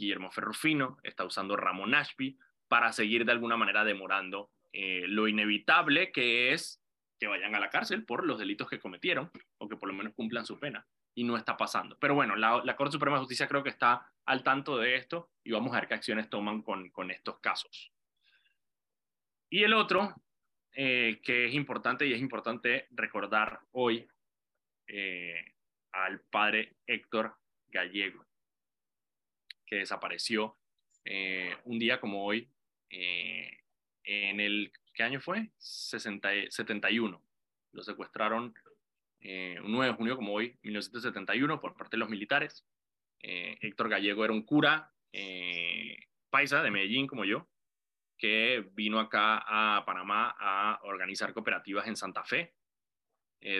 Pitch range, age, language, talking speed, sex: 95-120 Hz, 20-39, Spanish, 150 wpm, male